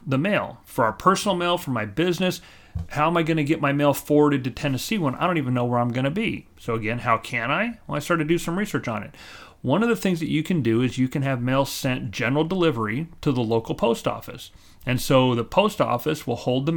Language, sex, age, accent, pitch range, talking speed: English, male, 40-59, American, 120-150 Hz, 260 wpm